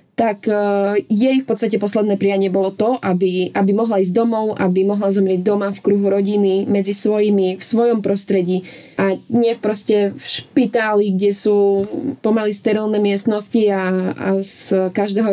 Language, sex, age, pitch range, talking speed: Slovak, female, 20-39, 195-220 Hz, 155 wpm